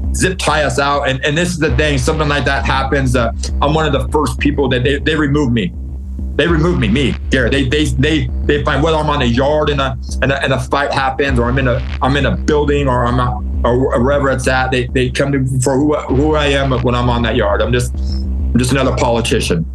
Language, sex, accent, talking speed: English, male, American, 260 wpm